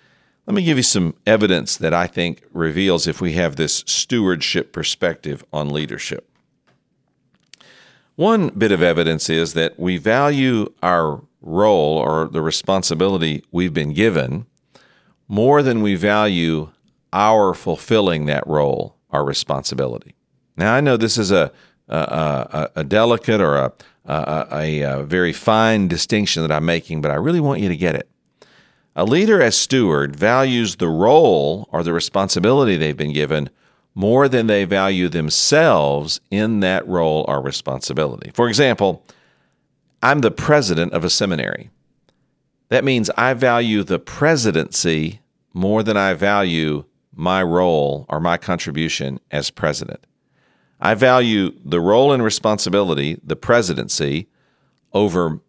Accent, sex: American, male